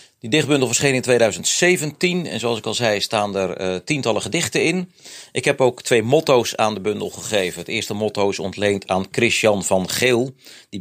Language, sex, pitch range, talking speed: Dutch, male, 95-125 Hz, 195 wpm